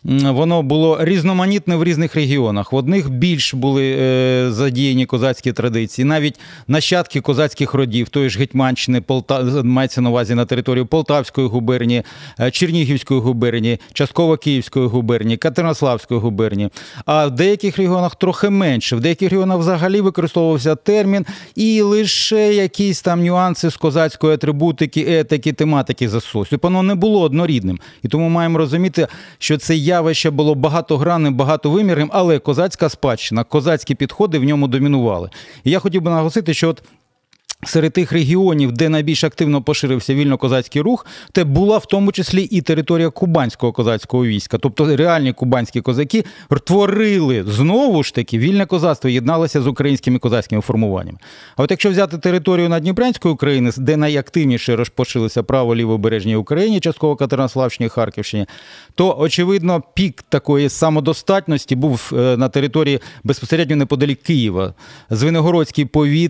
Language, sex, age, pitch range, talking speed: Ukrainian, male, 40-59, 130-170 Hz, 135 wpm